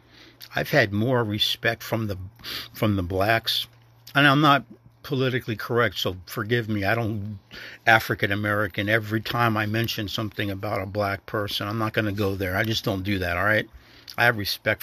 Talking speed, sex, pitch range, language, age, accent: 185 wpm, male, 100-115 Hz, English, 60-79, American